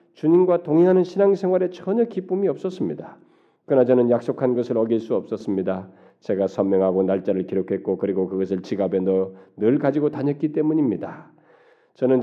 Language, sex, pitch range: Korean, male, 105-155 Hz